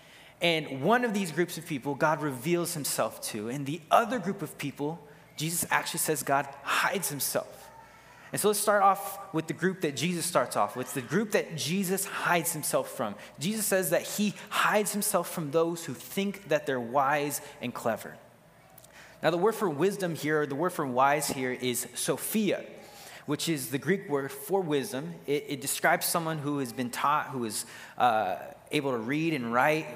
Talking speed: 190 wpm